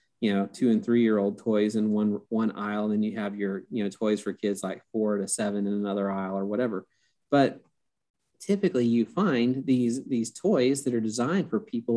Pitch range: 110-130 Hz